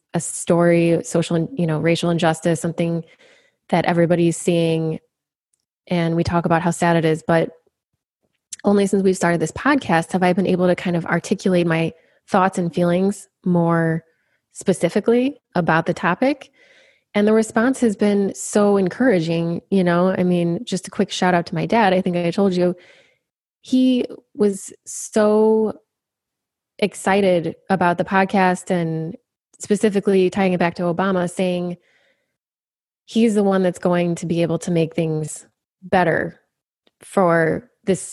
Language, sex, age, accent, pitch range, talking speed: English, female, 20-39, American, 170-200 Hz, 150 wpm